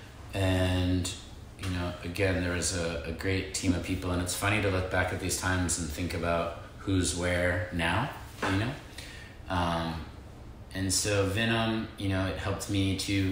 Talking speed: 175 wpm